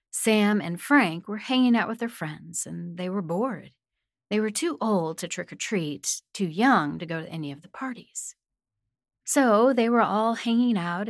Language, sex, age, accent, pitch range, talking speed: English, female, 40-59, American, 160-220 Hz, 185 wpm